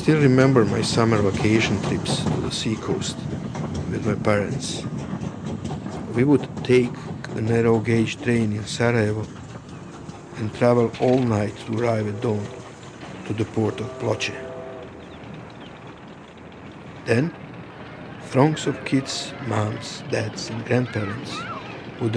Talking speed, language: 120 wpm, English